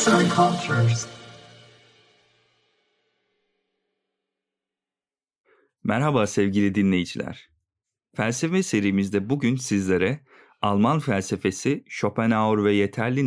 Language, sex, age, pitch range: Turkish, male, 40-59, 100-125 Hz